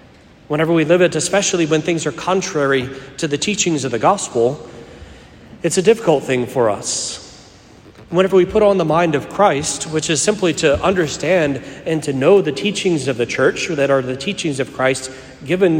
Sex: male